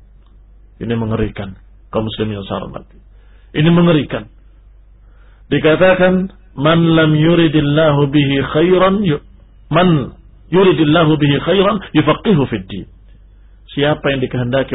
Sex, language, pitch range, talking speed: male, Indonesian, 115-170 Hz, 65 wpm